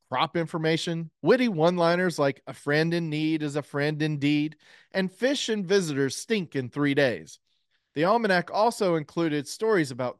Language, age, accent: English, 40-59, American